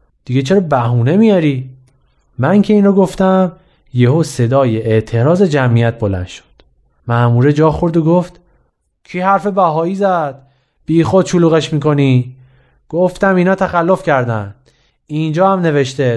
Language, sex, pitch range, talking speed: Persian, male, 125-180 Hz, 125 wpm